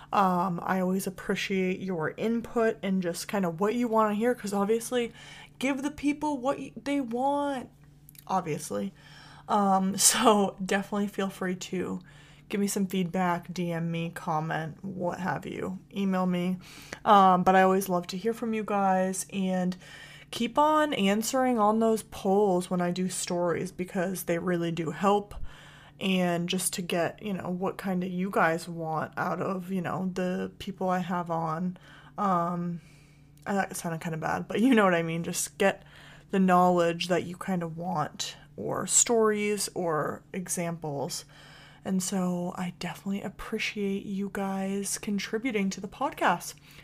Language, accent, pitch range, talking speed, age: English, American, 175-210 Hz, 160 wpm, 20-39